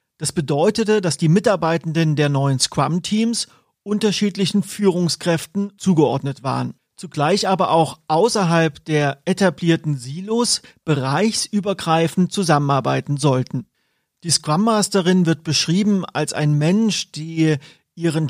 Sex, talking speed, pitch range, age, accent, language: male, 100 wpm, 155-190 Hz, 40-59, German, German